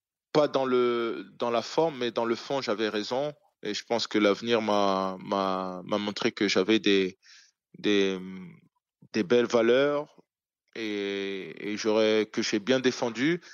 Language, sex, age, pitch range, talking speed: French, male, 20-39, 105-125 Hz, 155 wpm